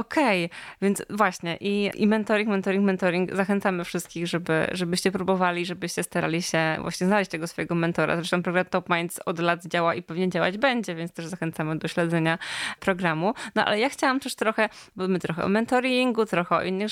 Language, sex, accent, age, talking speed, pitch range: Polish, female, native, 20-39, 185 wpm, 175-210 Hz